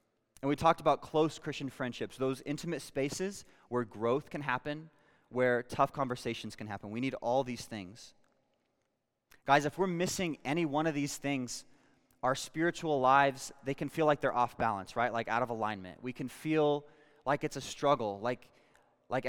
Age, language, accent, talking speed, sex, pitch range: 20-39, English, American, 175 wpm, male, 125-155 Hz